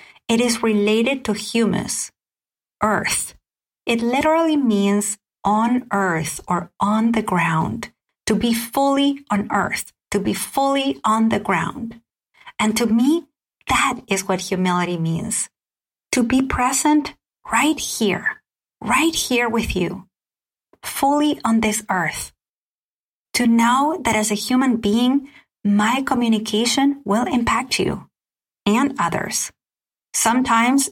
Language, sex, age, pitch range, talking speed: English, female, 30-49, 200-255 Hz, 120 wpm